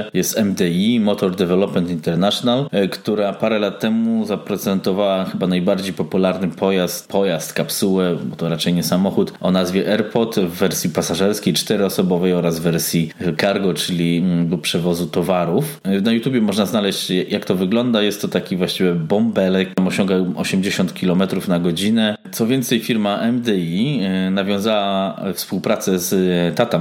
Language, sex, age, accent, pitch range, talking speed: Polish, male, 20-39, native, 85-100 Hz, 135 wpm